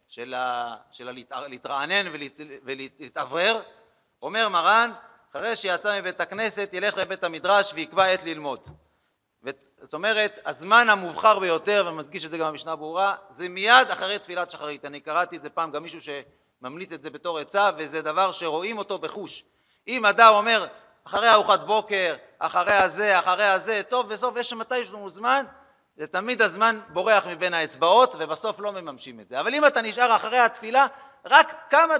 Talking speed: 165 wpm